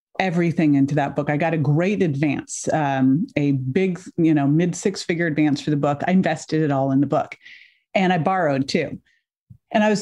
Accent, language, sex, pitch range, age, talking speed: American, English, female, 160-205 Hz, 40-59, 210 wpm